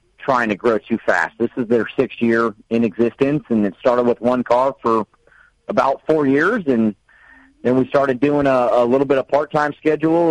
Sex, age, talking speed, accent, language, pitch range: male, 40-59, 200 wpm, American, English, 115-140 Hz